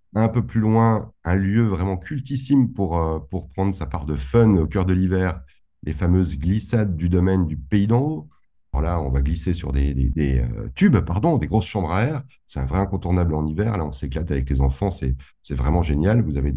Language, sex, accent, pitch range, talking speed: French, male, French, 75-100 Hz, 225 wpm